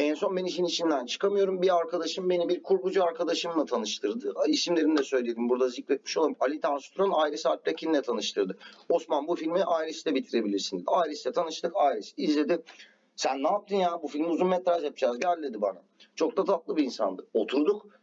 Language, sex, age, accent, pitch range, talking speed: Turkish, male, 40-59, native, 155-205 Hz, 165 wpm